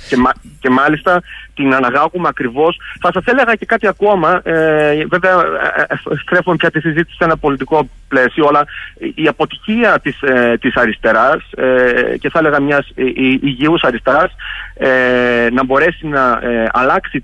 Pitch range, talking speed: 135-200 Hz, 125 wpm